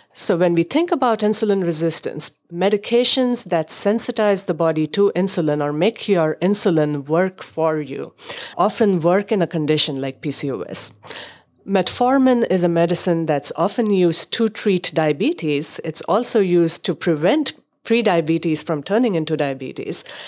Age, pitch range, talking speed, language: 50-69, 155-210 Hz, 140 wpm, English